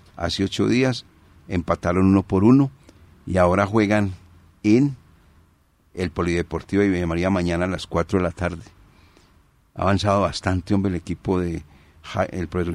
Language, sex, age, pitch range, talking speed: Spanish, male, 50-69, 90-100 Hz, 150 wpm